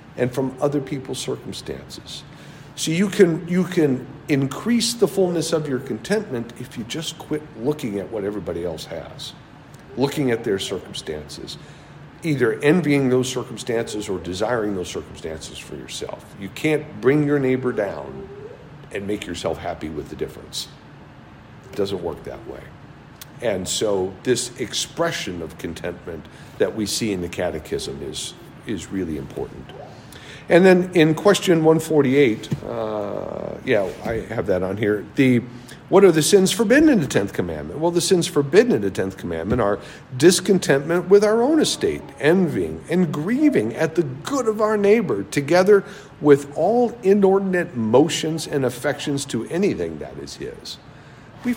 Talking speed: 155 wpm